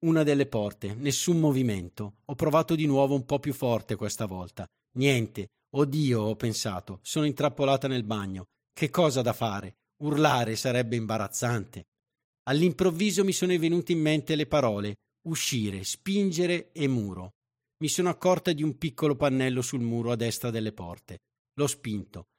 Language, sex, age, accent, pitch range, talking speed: Italian, male, 50-69, native, 115-155 Hz, 155 wpm